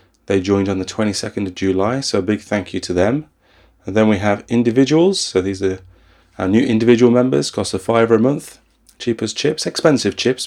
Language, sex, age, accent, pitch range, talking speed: English, male, 30-49, British, 95-115 Hz, 200 wpm